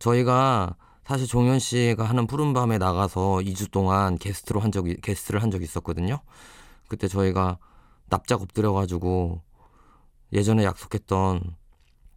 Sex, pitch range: male, 90-115 Hz